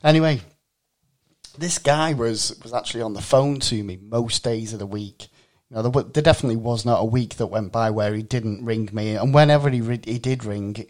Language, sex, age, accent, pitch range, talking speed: English, male, 30-49, British, 110-130 Hz, 215 wpm